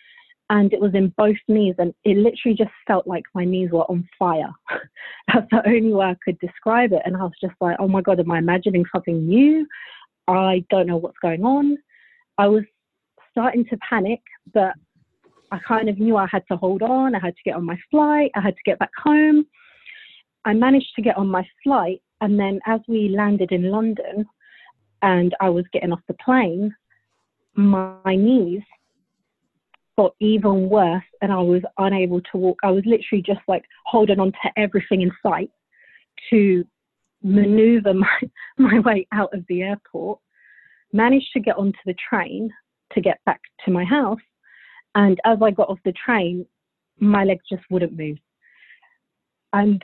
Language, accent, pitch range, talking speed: English, British, 185-235 Hz, 180 wpm